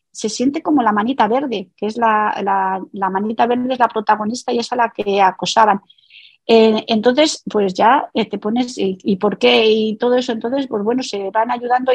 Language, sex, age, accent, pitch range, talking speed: Spanish, female, 40-59, Spanish, 210-250 Hz, 205 wpm